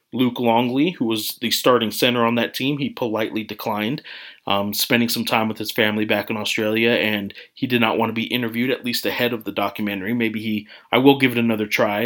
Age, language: 30-49, English